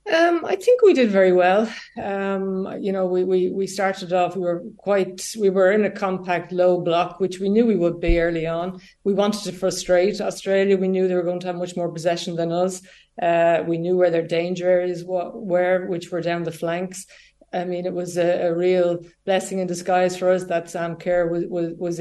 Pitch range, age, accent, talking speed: 170-185 Hz, 30-49, Irish, 220 wpm